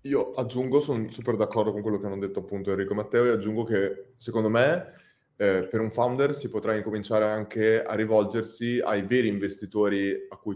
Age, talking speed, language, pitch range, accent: 20-39, 195 wpm, Italian, 105-120 Hz, native